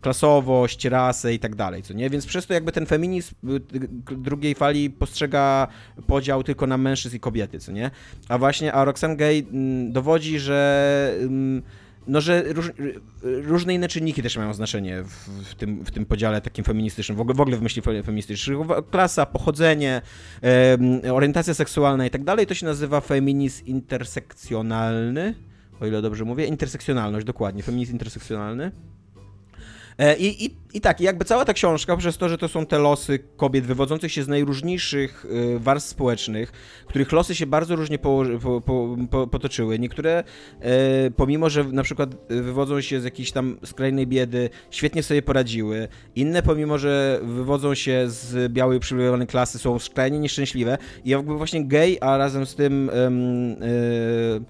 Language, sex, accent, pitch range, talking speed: Polish, male, native, 120-145 Hz, 160 wpm